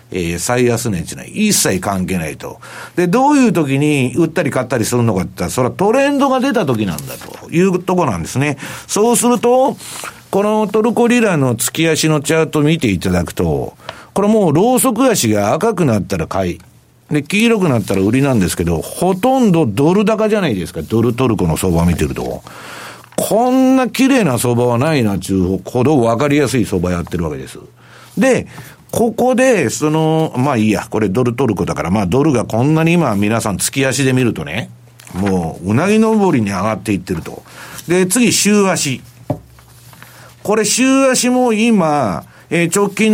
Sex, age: male, 50-69